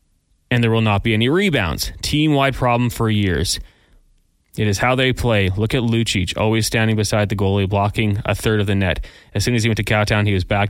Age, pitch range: 20-39, 100-120 Hz